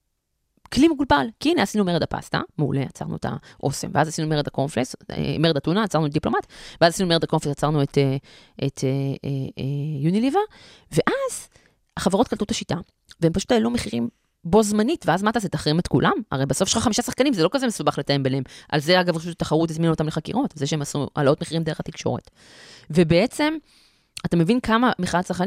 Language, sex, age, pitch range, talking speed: Hebrew, female, 20-39, 145-210 Hz, 175 wpm